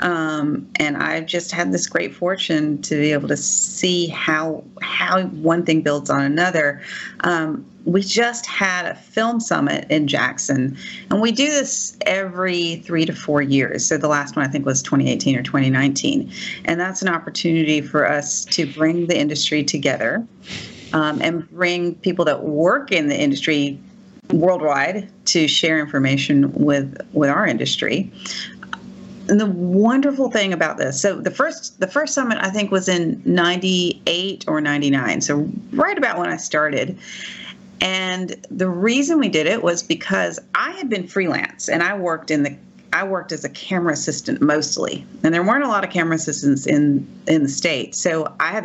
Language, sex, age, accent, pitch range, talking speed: English, female, 40-59, American, 150-195 Hz, 175 wpm